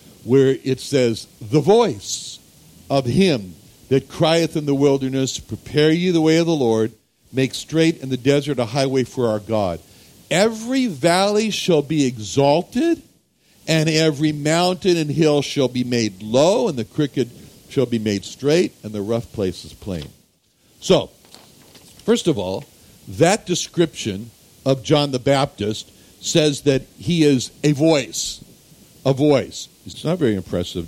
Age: 60-79